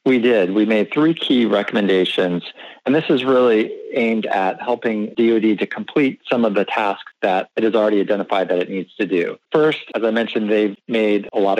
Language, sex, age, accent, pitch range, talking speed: English, male, 40-59, American, 100-120 Hz, 200 wpm